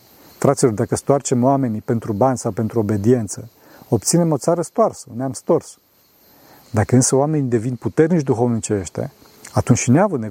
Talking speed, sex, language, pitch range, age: 145 wpm, male, Romanian, 115-140 Hz, 40-59